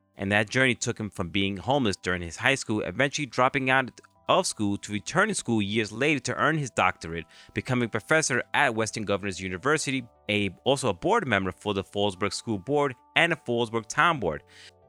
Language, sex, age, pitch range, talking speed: English, male, 30-49, 100-145 Hz, 195 wpm